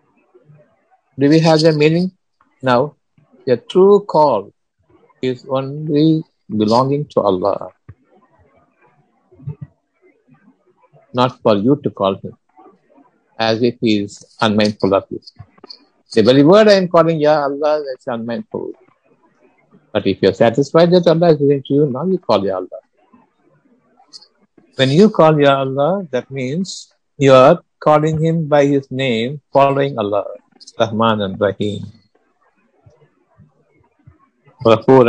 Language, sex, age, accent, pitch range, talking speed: Tamil, male, 60-79, native, 115-155 Hz, 125 wpm